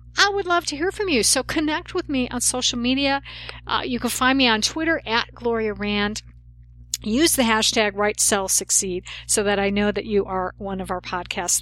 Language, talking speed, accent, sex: English, 210 wpm, American, female